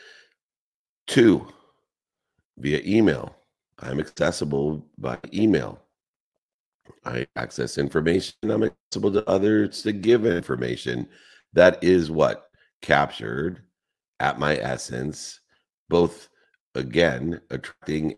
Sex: male